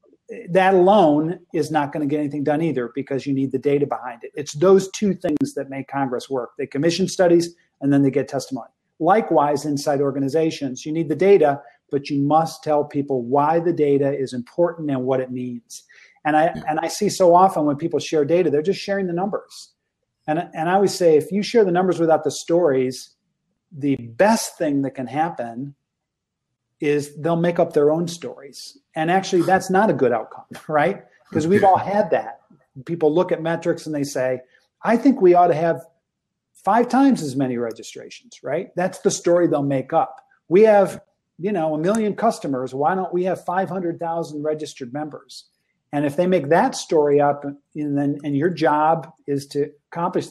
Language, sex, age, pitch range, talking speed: English, male, 40-59, 140-180 Hz, 195 wpm